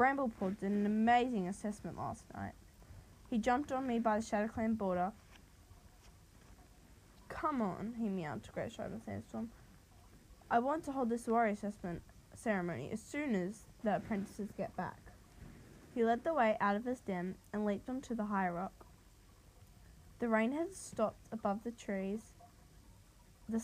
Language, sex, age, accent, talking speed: English, female, 10-29, Australian, 150 wpm